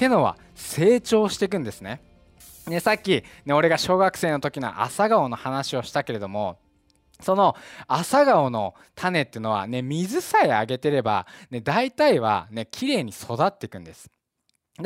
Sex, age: male, 20-39